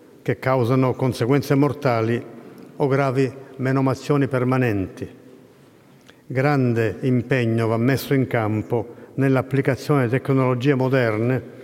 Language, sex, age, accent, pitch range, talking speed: Italian, male, 50-69, native, 125-140 Hz, 95 wpm